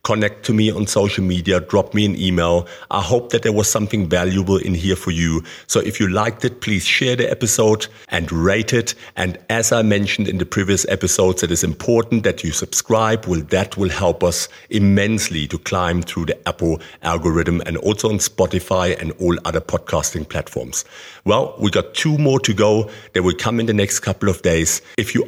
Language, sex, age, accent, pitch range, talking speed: English, male, 50-69, German, 90-110 Hz, 200 wpm